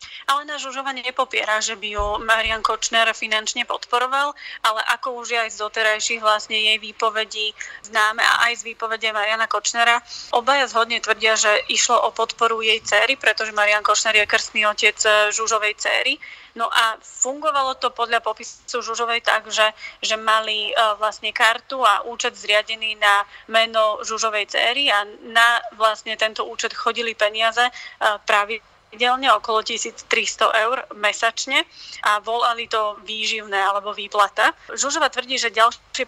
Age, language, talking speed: 30-49, Slovak, 150 wpm